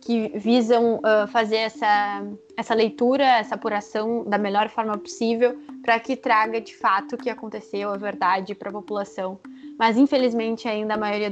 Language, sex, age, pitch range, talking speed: Portuguese, female, 20-39, 215-245 Hz, 165 wpm